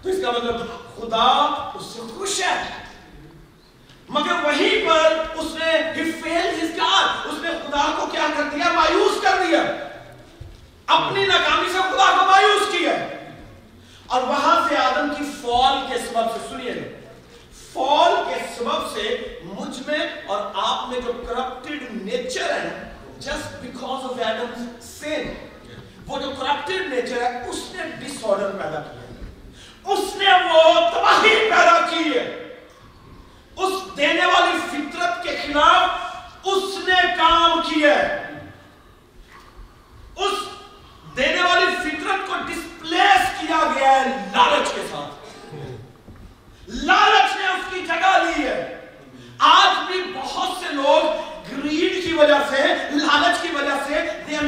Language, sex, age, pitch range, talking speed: Urdu, male, 40-59, 275-360 Hz, 95 wpm